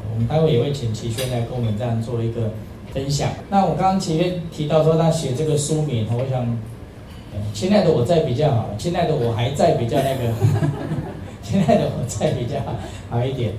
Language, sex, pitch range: Chinese, male, 115-155 Hz